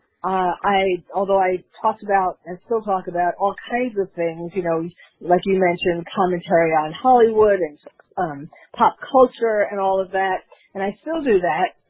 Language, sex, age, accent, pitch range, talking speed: English, female, 40-59, American, 185-225 Hz, 175 wpm